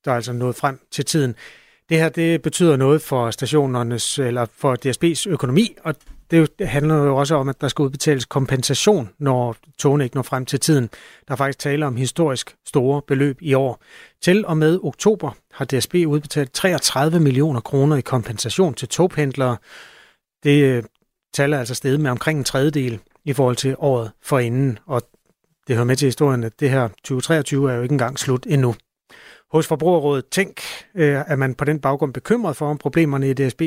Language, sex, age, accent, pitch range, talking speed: Danish, male, 30-49, native, 130-155 Hz, 185 wpm